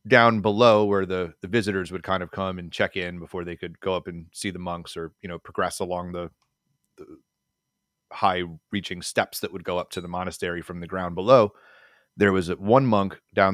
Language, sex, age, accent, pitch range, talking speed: English, male, 30-49, American, 90-105 Hz, 215 wpm